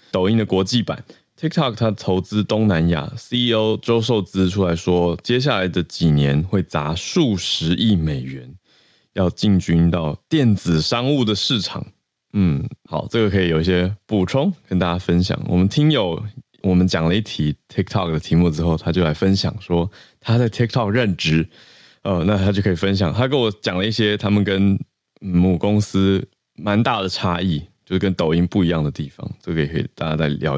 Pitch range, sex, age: 85-110 Hz, male, 20-39